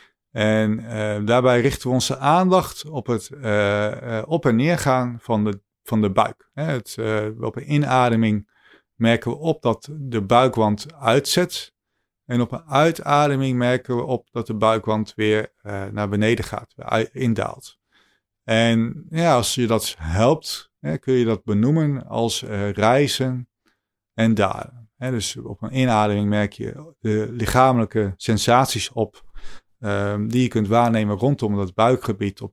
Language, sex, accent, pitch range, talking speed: Dutch, male, Dutch, 105-135 Hz, 155 wpm